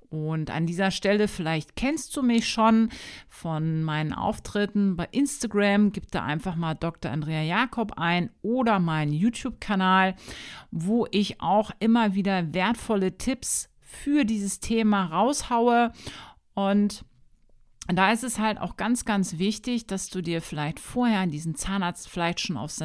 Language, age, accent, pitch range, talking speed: German, 50-69, German, 155-215 Hz, 145 wpm